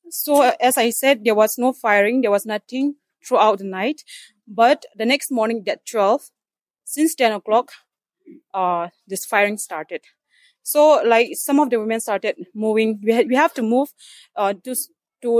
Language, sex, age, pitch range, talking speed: English, female, 20-39, 220-280 Hz, 175 wpm